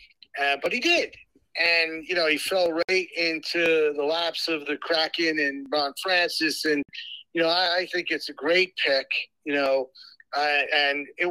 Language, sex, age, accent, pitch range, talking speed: English, male, 40-59, American, 160-205 Hz, 180 wpm